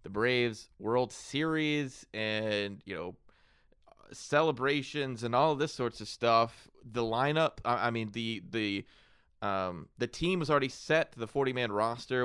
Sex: male